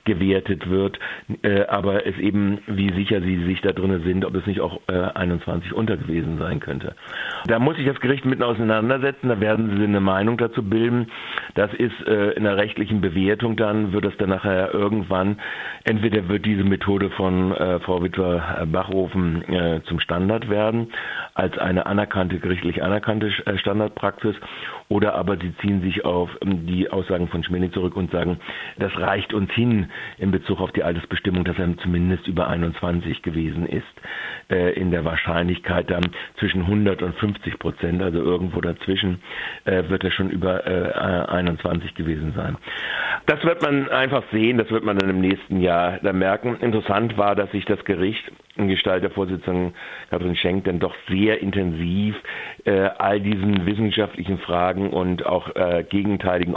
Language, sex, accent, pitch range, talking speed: German, male, German, 90-105 Hz, 165 wpm